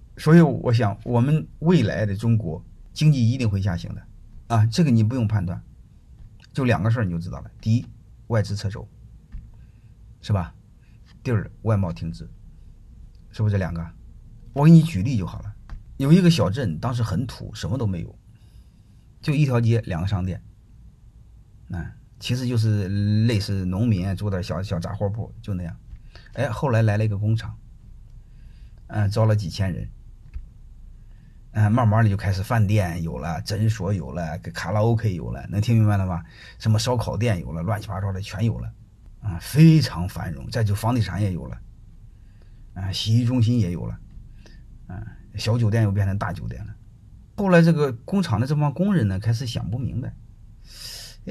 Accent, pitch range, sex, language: native, 100-120 Hz, male, Chinese